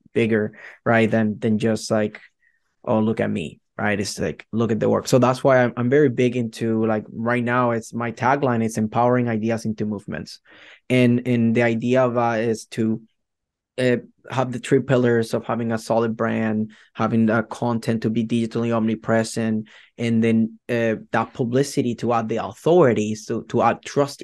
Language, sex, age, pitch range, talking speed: English, male, 20-39, 110-120 Hz, 185 wpm